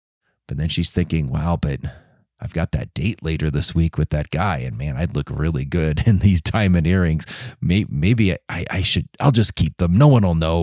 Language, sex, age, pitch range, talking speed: English, male, 30-49, 90-130 Hz, 210 wpm